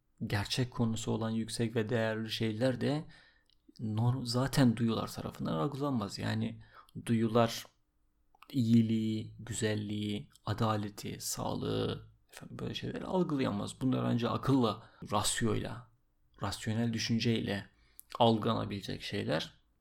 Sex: male